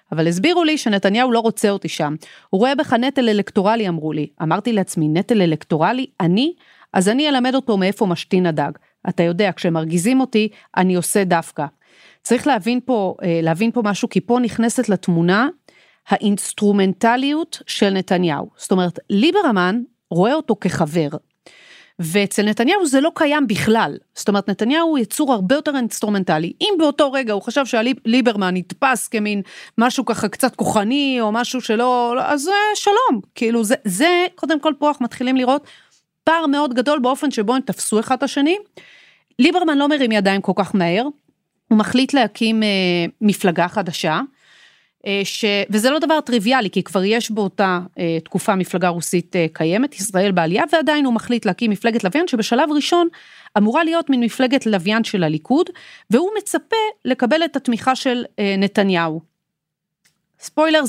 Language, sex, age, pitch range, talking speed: Hebrew, female, 40-59, 190-265 Hz, 150 wpm